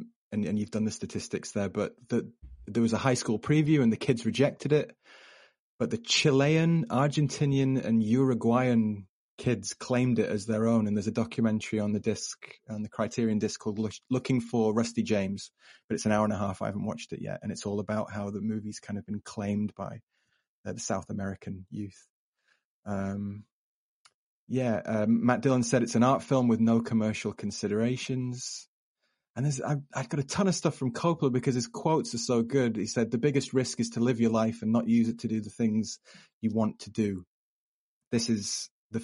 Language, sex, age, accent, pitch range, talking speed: English, male, 30-49, British, 105-125 Hz, 200 wpm